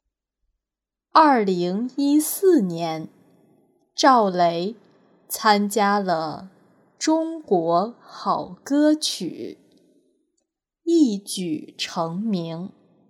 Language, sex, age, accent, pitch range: Chinese, female, 20-39, native, 180-285 Hz